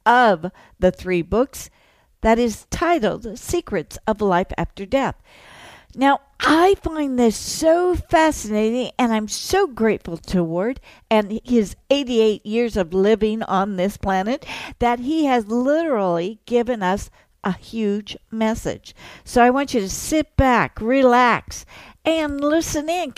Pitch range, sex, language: 205-280 Hz, female, English